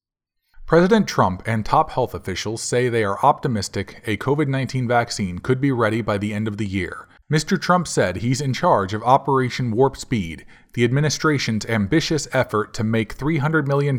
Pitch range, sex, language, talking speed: 110-145 Hz, male, English, 170 wpm